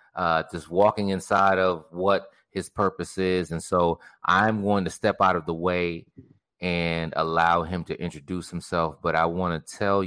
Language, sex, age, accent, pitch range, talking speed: English, male, 30-49, American, 85-100 Hz, 180 wpm